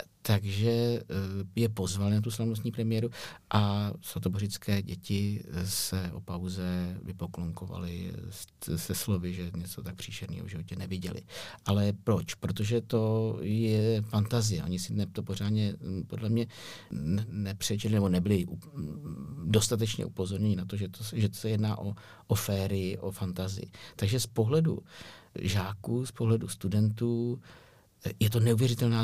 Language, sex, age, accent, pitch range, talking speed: Czech, male, 50-69, native, 95-115 Hz, 130 wpm